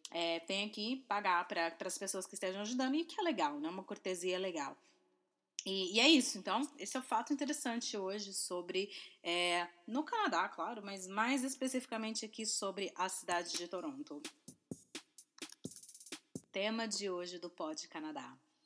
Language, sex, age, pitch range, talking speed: English, female, 20-39, 185-275 Hz, 160 wpm